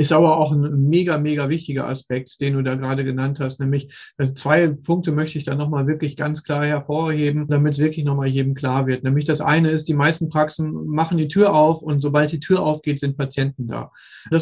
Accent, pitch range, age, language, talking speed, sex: German, 140-165 Hz, 40-59, German, 215 wpm, male